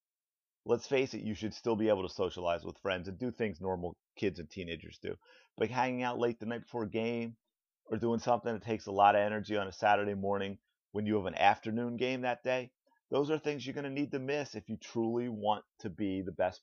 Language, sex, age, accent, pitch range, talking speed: English, male, 30-49, American, 100-125 Hz, 240 wpm